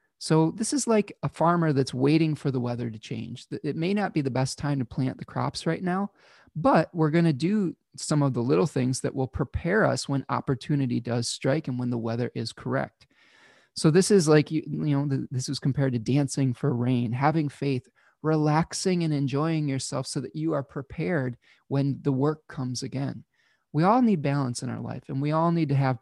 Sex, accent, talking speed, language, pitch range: male, American, 210 wpm, English, 130-160 Hz